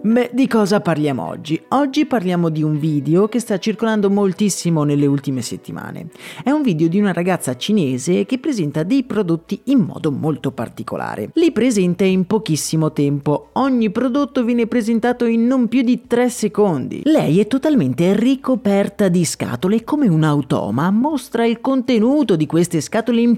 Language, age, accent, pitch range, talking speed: Italian, 30-49, native, 155-225 Hz, 160 wpm